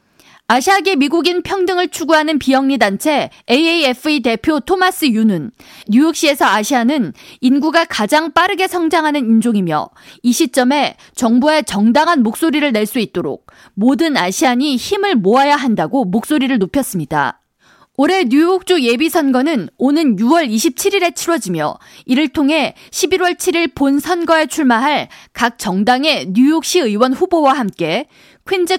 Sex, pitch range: female, 240-335 Hz